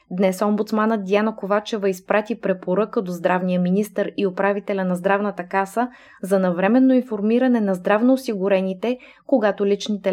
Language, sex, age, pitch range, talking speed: Bulgarian, female, 20-39, 185-230 Hz, 125 wpm